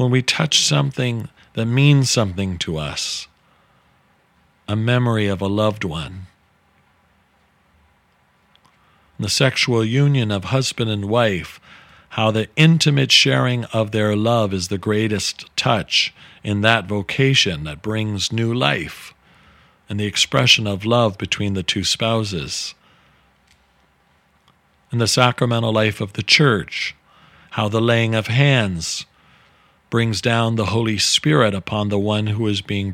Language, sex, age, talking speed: English, male, 50-69, 130 wpm